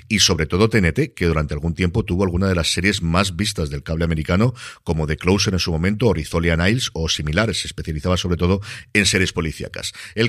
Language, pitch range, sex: Spanish, 85-120 Hz, male